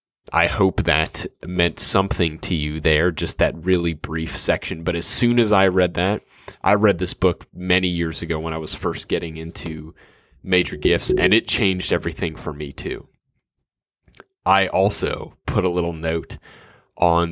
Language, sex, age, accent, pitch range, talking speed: English, male, 20-39, American, 85-100 Hz, 170 wpm